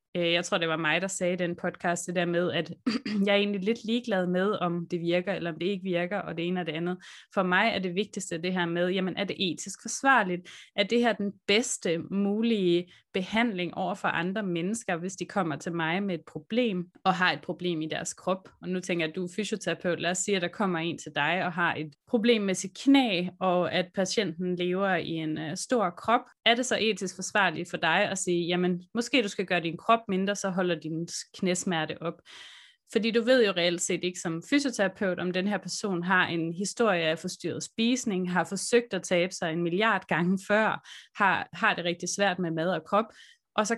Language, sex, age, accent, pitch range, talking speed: Danish, female, 20-39, native, 170-205 Hz, 230 wpm